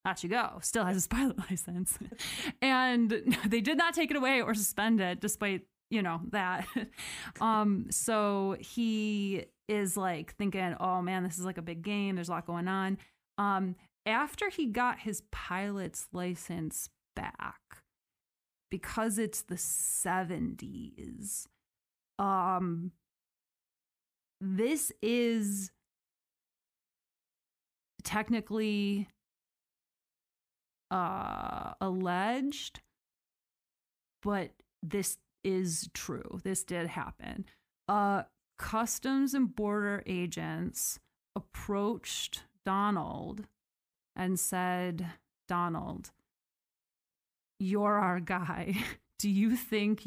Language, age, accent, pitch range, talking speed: English, 20-39, American, 180-215 Hz, 100 wpm